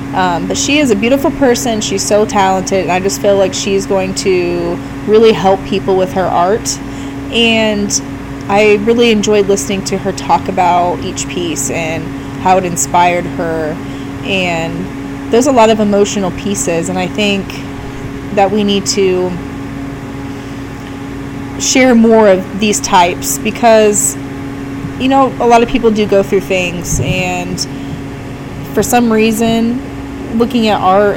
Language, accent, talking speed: English, American, 150 wpm